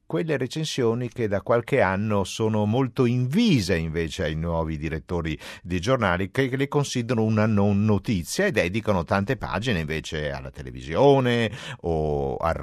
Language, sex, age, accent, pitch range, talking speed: Italian, male, 50-69, native, 85-115 Hz, 145 wpm